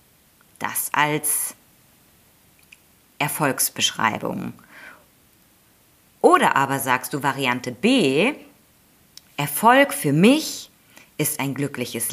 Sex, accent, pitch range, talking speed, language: female, German, 140-210 Hz, 75 wpm, German